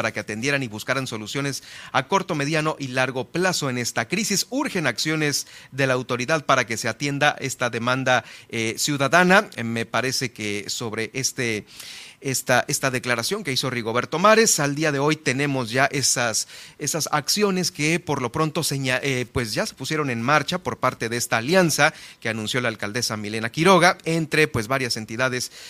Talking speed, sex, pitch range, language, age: 175 wpm, male, 125-165 Hz, Spanish, 40-59